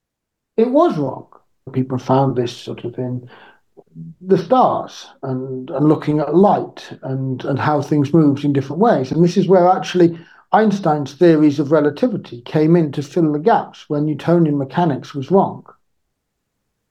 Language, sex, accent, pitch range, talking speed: English, male, British, 150-195 Hz, 155 wpm